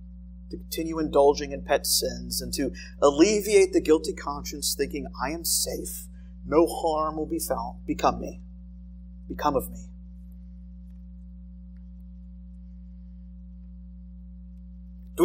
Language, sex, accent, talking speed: English, male, American, 105 wpm